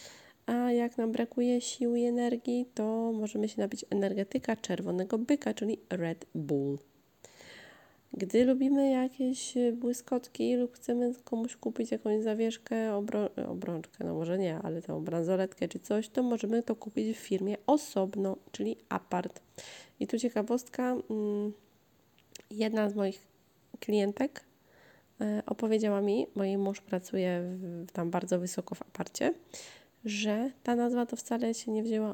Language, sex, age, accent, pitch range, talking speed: Polish, female, 20-39, native, 190-235 Hz, 135 wpm